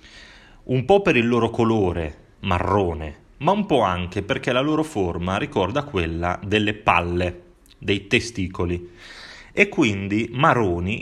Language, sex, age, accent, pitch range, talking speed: Italian, male, 30-49, native, 90-115 Hz, 130 wpm